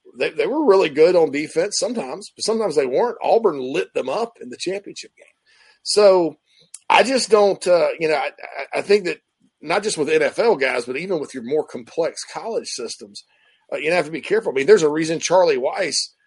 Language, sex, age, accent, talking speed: English, male, 40-59, American, 210 wpm